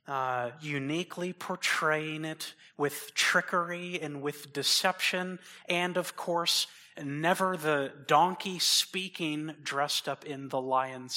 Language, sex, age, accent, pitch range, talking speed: English, male, 30-49, American, 140-170 Hz, 115 wpm